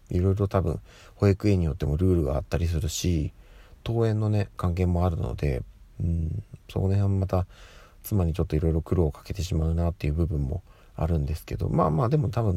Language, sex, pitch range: Japanese, male, 85-105 Hz